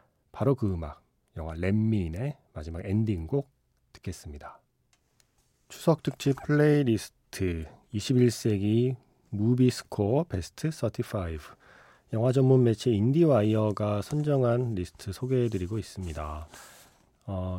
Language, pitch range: Korean, 95-135 Hz